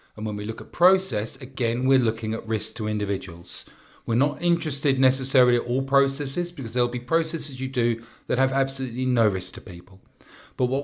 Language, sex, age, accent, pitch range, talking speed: English, male, 40-59, British, 110-145 Hz, 195 wpm